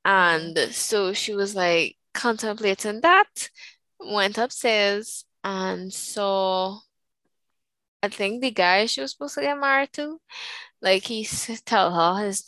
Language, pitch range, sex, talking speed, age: English, 190-260 Hz, female, 130 wpm, 10-29